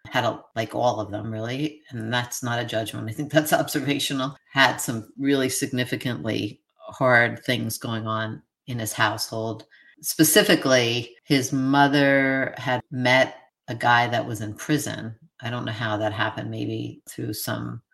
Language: English